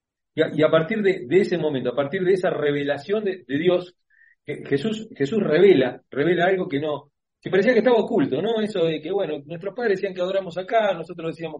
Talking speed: 220 wpm